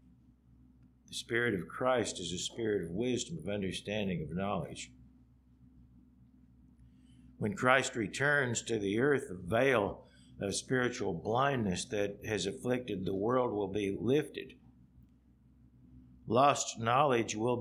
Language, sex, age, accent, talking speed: English, male, 60-79, American, 120 wpm